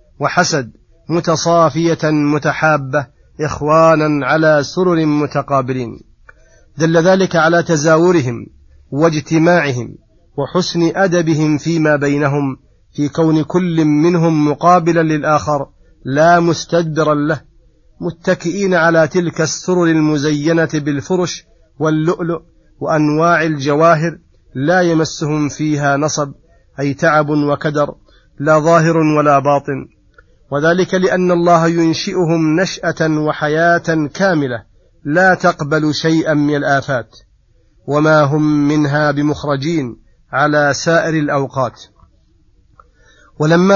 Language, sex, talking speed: Arabic, male, 90 wpm